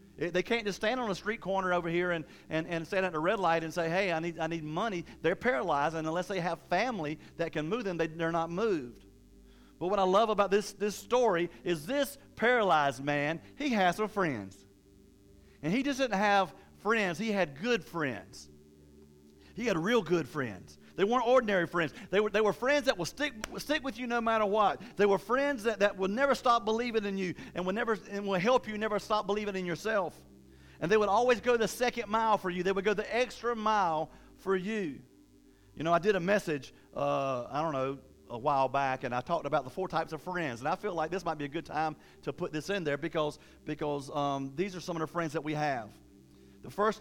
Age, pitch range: 40-59, 155-215 Hz